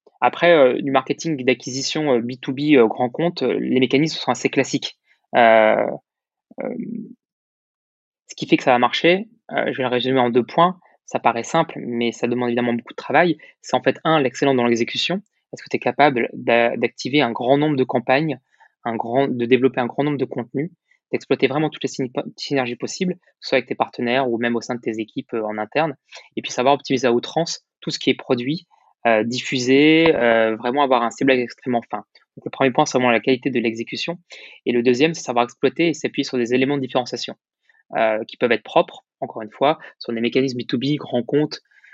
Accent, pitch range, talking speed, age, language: French, 120-150 Hz, 210 wpm, 20-39, French